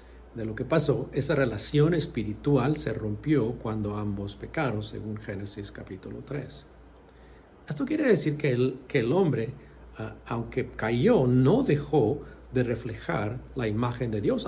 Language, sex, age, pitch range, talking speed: English, male, 50-69, 105-140 Hz, 135 wpm